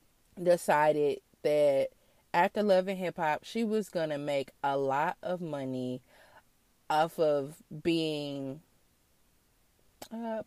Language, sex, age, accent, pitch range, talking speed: English, female, 30-49, American, 160-250 Hz, 105 wpm